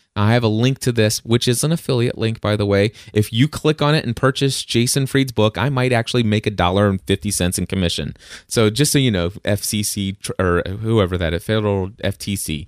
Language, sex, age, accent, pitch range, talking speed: English, male, 20-39, American, 90-120 Hz, 220 wpm